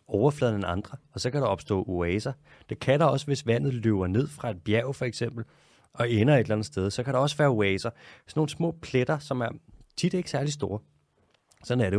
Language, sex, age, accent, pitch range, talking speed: Danish, male, 30-49, native, 100-135 Hz, 235 wpm